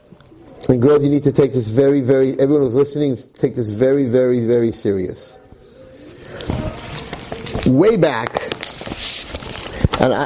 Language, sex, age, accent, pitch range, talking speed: English, male, 50-69, American, 135-195 Hz, 125 wpm